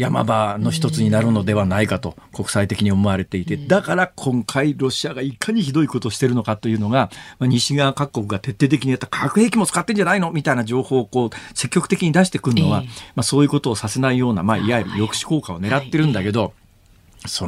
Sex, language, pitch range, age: male, Japanese, 110-160 Hz, 40-59